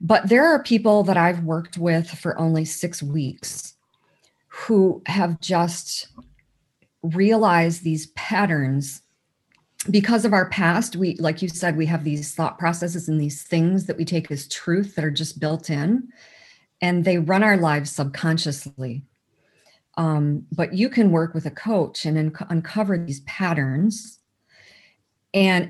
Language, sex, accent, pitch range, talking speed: English, female, American, 155-185 Hz, 145 wpm